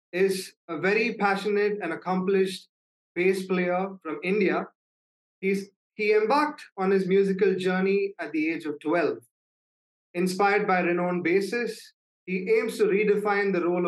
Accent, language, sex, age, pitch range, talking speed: Indian, English, male, 30-49, 175-215 Hz, 135 wpm